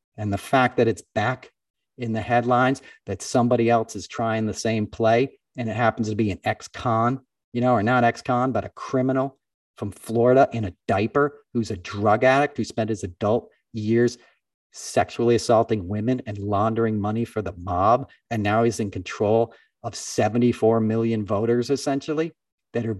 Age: 40-59